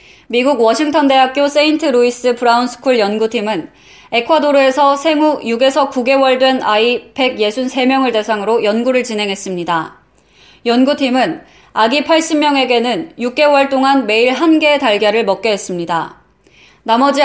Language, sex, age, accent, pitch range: Korean, female, 20-39, native, 230-275 Hz